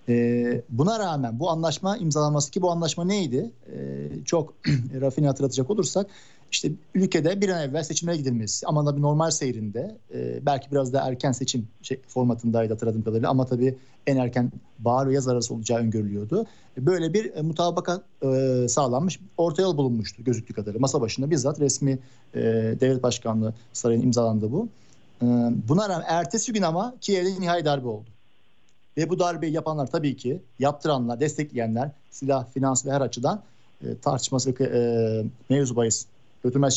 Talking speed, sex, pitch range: 140 wpm, male, 120-150 Hz